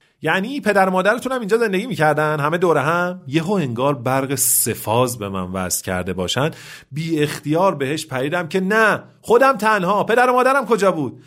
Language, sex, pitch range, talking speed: Persian, male, 130-200 Hz, 170 wpm